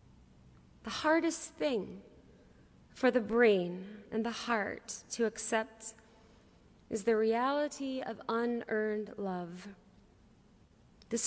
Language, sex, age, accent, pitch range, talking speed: English, female, 30-49, American, 195-235 Hz, 95 wpm